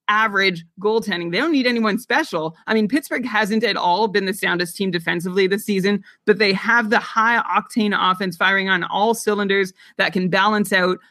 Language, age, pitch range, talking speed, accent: English, 30-49, 175-225 Hz, 190 wpm, American